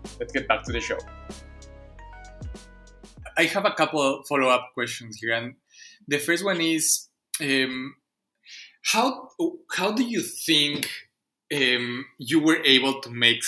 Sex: male